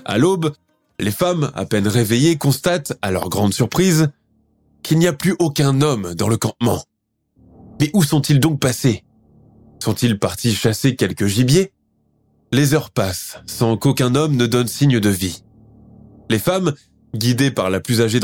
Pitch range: 110-145 Hz